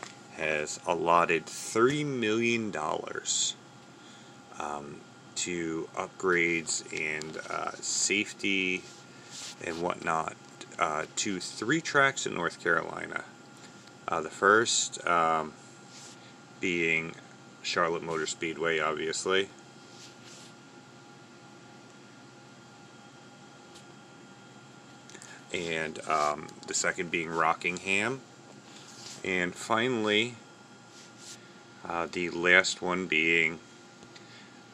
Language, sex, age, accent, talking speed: English, male, 30-49, American, 70 wpm